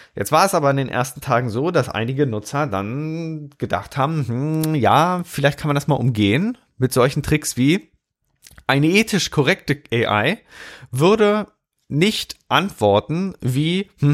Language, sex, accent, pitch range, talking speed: German, male, German, 100-140 Hz, 150 wpm